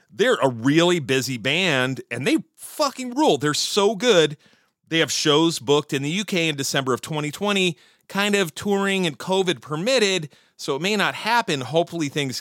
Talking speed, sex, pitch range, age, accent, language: 175 wpm, male, 130-185 Hz, 40-59, American, English